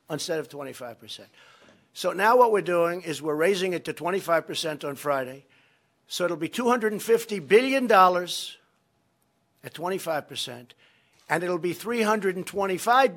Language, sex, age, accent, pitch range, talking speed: English, male, 60-79, American, 140-180 Hz, 125 wpm